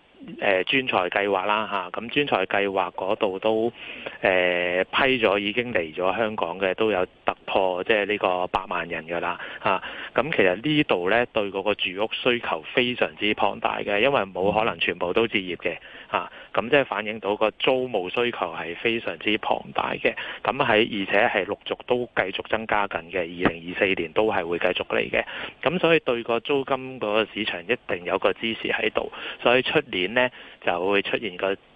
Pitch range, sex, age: 90-115 Hz, male, 30-49